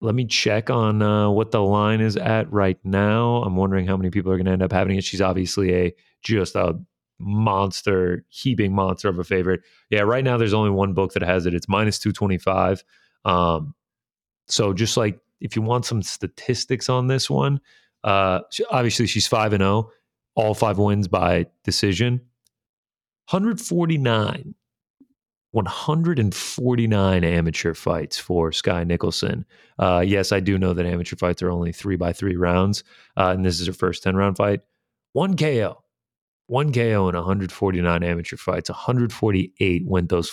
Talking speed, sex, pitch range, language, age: 175 wpm, male, 90-110 Hz, English, 30-49